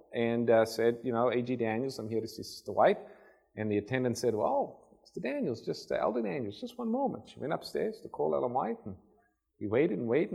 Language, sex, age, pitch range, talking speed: English, male, 40-59, 110-150 Hz, 225 wpm